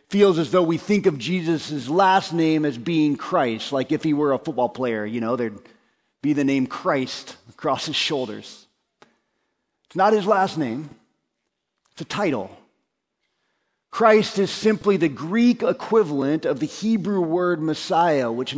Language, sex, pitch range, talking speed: English, male, 145-195 Hz, 160 wpm